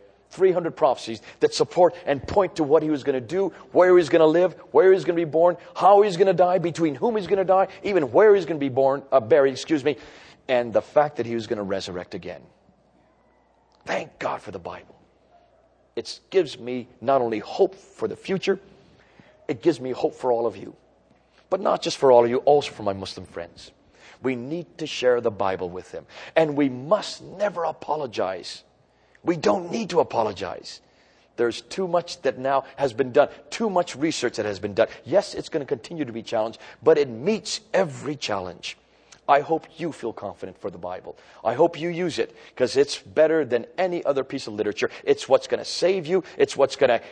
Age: 40-59